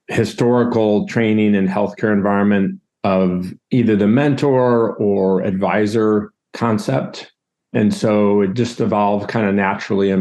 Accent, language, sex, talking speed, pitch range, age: American, English, male, 125 wpm, 100-115 Hz, 40-59